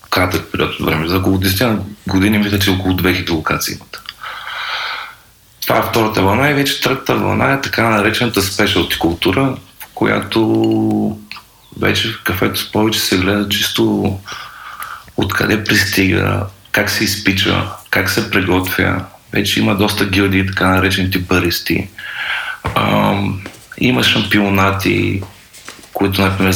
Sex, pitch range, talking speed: male, 95-110 Hz, 120 wpm